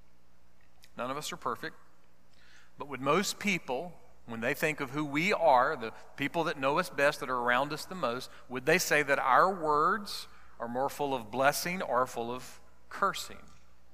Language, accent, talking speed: English, American, 185 wpm